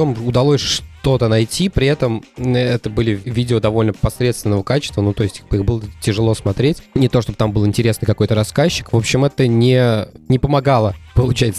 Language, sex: Russian, male